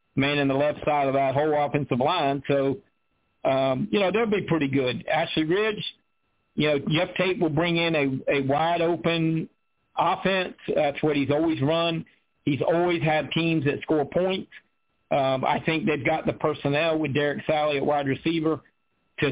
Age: 50-69